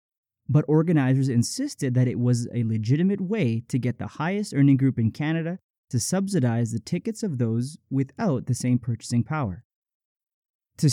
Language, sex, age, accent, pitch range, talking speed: English, male, 30-49, American, 120-160 Hz, 160 wpm